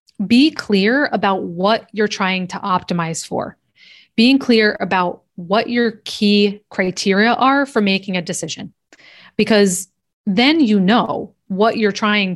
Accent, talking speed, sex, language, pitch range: American, 135 wpm, female, English, 185-220 Hz